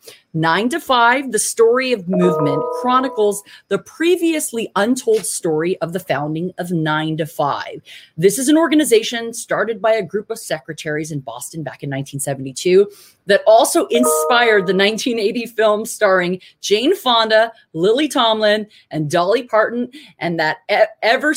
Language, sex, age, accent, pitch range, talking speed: English, female, 30-49, American, 165-230 Hz, 145 wpm